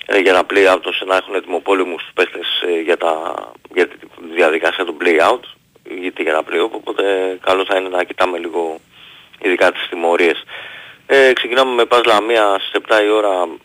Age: 30-49